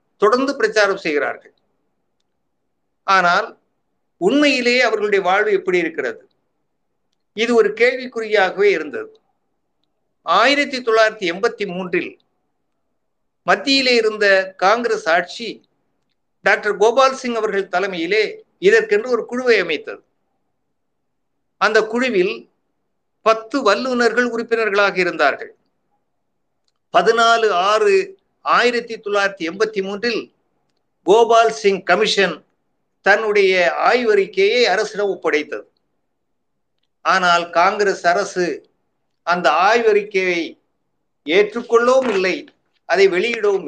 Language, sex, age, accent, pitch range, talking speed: Tamil, male, 50-69, native, 195-325 Hz, 75 wpm